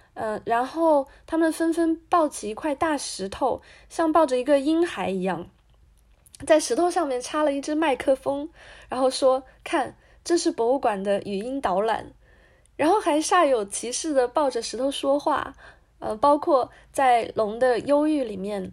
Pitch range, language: 225-325 Hz, Chinese